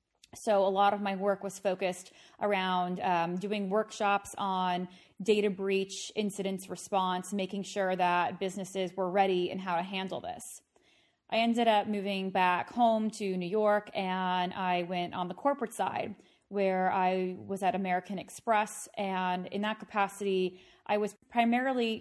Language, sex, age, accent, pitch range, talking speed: English, female, 20-39, American, 180-205 Hz, 155 wpm